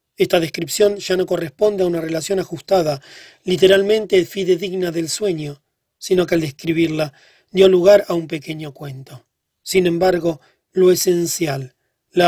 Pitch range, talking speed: 155-185 Hz, 135 wpm